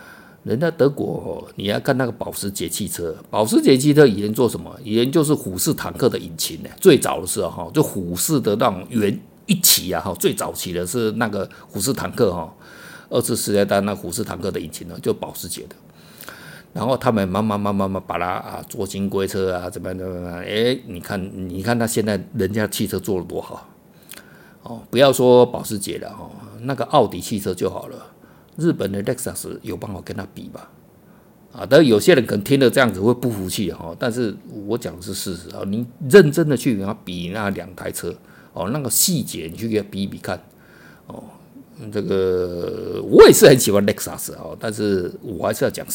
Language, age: Chinese, 50-69